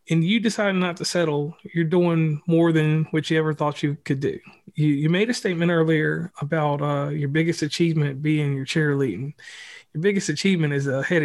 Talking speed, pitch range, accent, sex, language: 190 wpm, 150-175 Hz, American, male, English